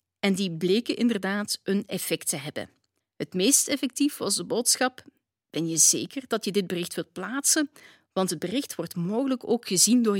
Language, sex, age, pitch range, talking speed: Dutch, female, 40-59, 185-270 Hz, 180 wpm